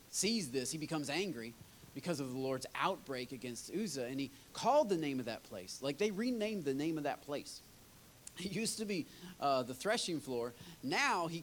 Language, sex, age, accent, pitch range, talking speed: English, male, 30-49, American, 125-175 Hz, 200 wpm